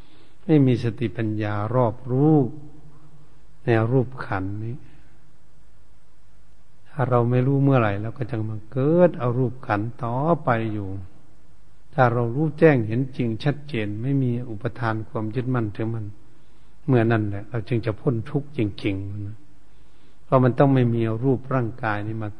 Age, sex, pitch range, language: 70-89, male, 110-135 Hz, Thai